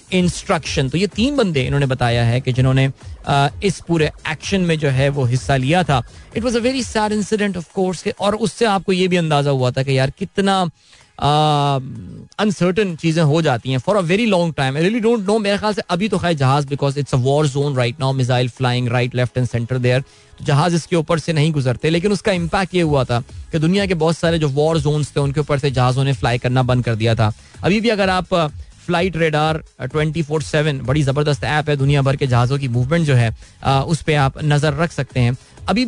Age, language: 20-39, Hindi